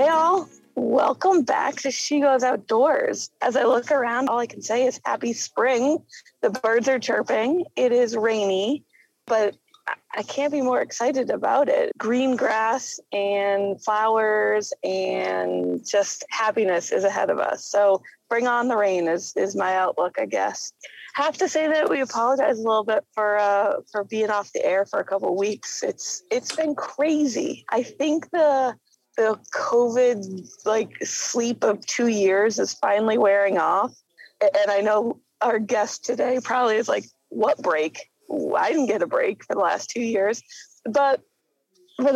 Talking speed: 170 wpm